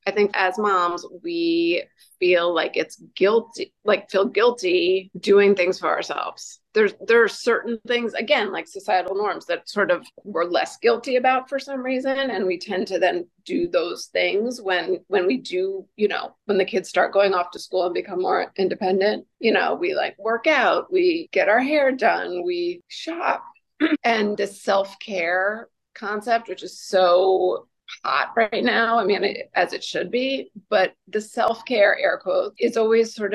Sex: female